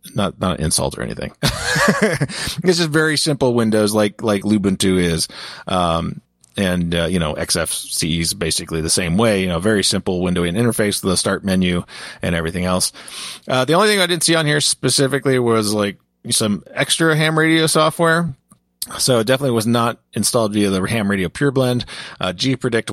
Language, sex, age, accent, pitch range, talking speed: English, male, 30-49, American, 95-130 Hz, 185 wpm